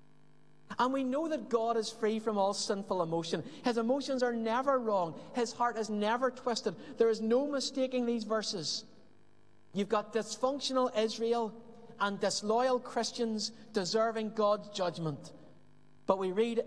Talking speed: 145 wpm